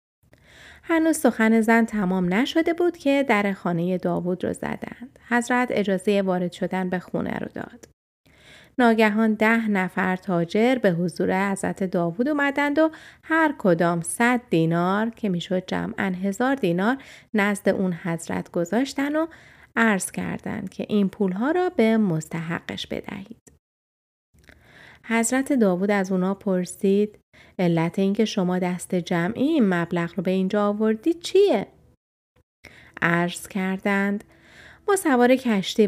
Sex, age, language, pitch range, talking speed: female, 30-49, Persian, 180-235 Hz, 125 wpm